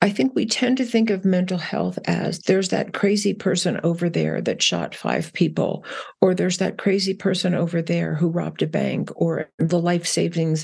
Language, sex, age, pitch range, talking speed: English, female, 50-69, 170-205 Hz, 200 wpm